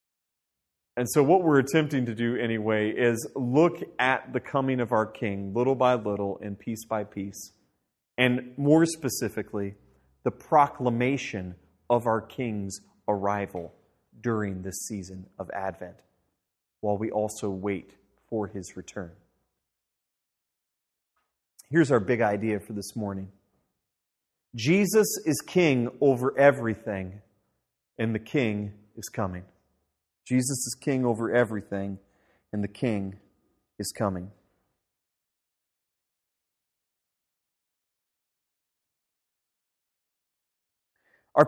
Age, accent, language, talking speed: 30-49, American, English, 105 wpm